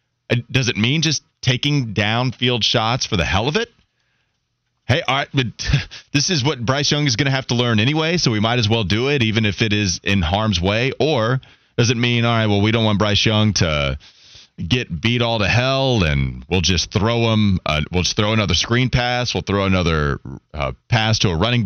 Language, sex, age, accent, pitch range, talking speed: English, male, 30-49, American, 100-125 Hz, 220 wpm